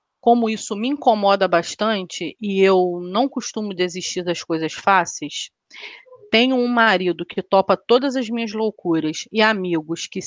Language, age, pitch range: Portuguese, 30-49, 175-220 Hz